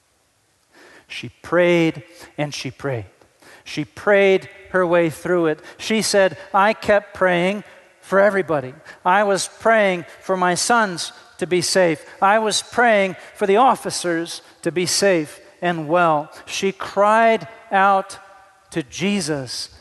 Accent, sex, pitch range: American, male, 170-200 Hz